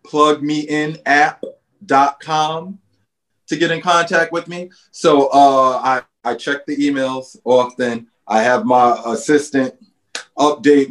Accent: American